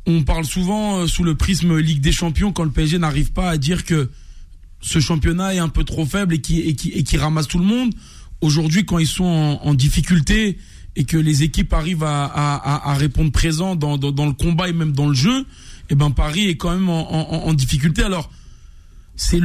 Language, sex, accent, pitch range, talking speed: French, male, French, 145-170 Hz, 225 wpm